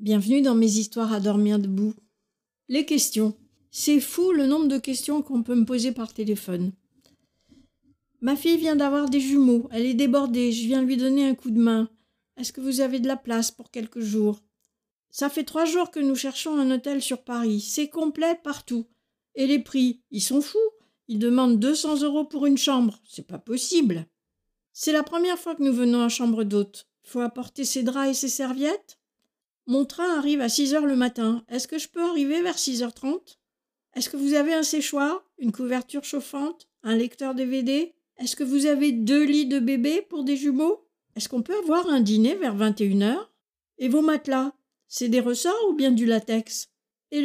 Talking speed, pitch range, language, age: 195 wpm, 230-295 Hz, French, 50-69